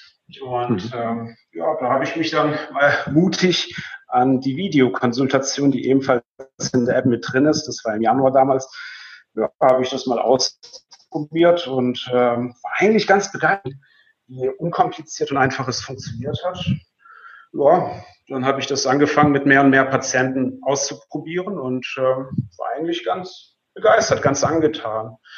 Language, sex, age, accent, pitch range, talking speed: German, male, 40-59, German, 125-145 Hz, 155 wpm